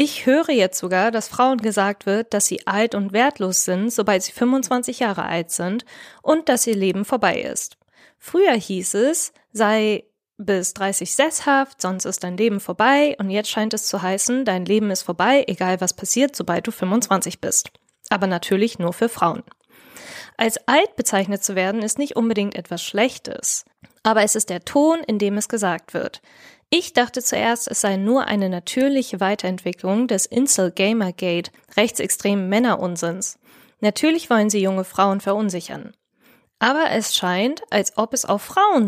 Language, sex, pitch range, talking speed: German, female, 190-245 Hz, 165 wpm